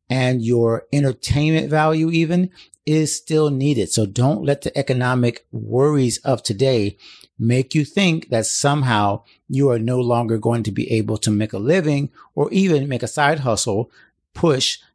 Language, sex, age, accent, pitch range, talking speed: English, male, 50-69, American, 110-140 Hz, 160 wpm